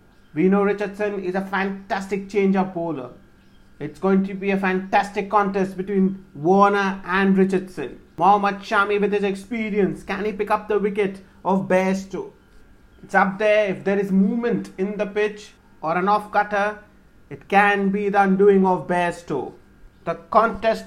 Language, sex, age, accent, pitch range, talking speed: English, male, 30-49, Indian, 185-205 Hz, 160 wpm